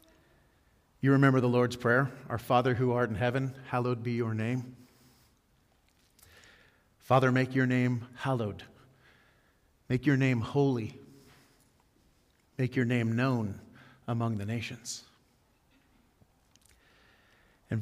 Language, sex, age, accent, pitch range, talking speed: English, male, 40-59, American, 120-135 Hz, 110 wpm